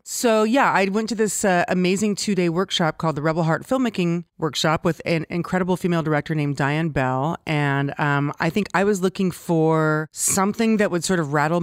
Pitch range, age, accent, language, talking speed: 160-190 Hz, 30-49, American, English, 195 wpm